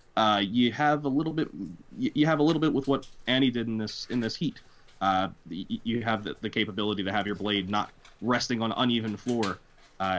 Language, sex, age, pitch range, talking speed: English, male, 20-39, 100-130 Hz, 225 wpm